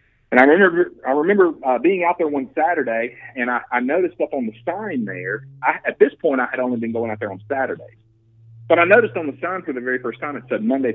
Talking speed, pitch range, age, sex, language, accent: 260 wpm, 110-155 Hz, 40-59, male, English, American